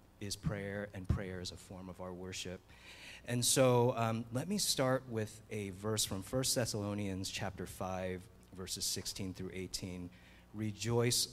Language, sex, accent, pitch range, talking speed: English, male, American, 95-115 Hz, 155 wpm